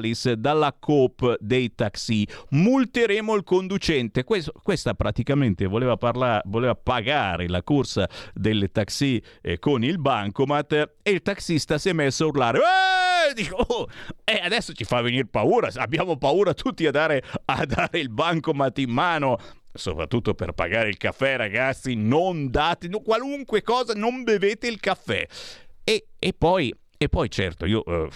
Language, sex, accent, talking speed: Italian, male, native, 150 wpm